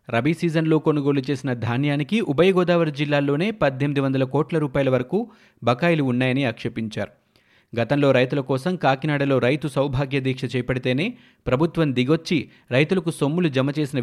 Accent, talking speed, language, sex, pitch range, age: native, 125 wpm, Telugu, male, 125-150 Hz, 30-49